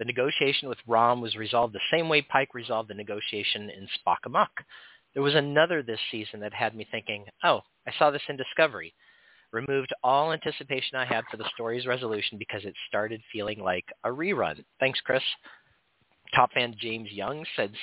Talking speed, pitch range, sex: 180 wpm, 105-145 Hz, male